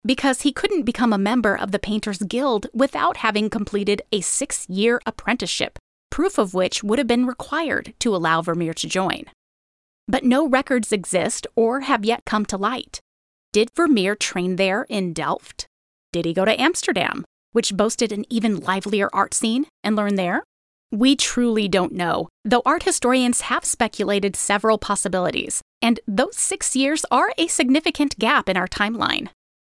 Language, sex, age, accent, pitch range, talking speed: English, female, 30-49, American, 195-255 Hz, 165 wpm